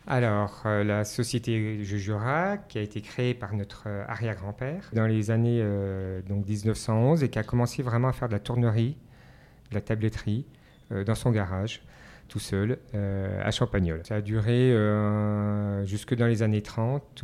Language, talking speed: French, 175 wpm